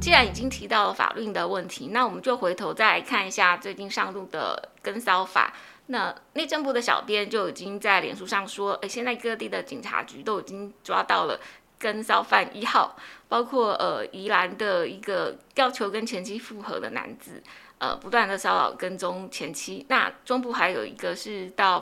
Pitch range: 200-260 Hz